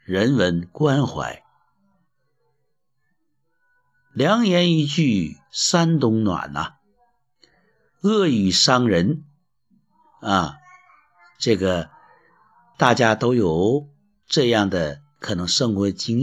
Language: Chinese